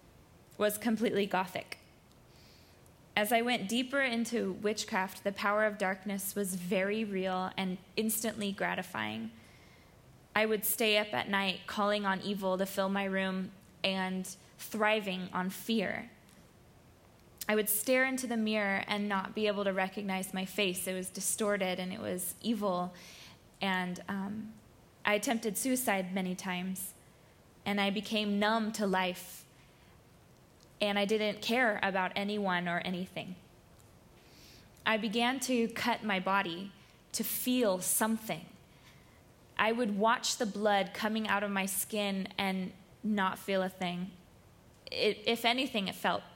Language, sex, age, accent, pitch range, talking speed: English, female, 20-39, American, 185-215 Hz, 135 wpm